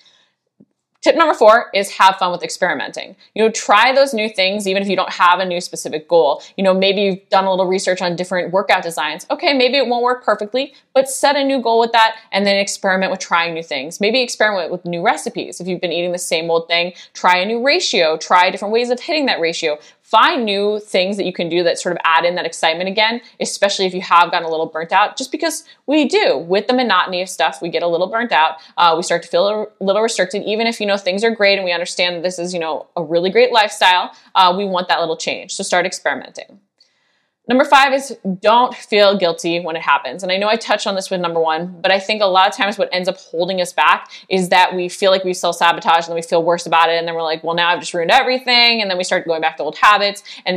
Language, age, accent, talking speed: English, 20-39, American, 260 wpm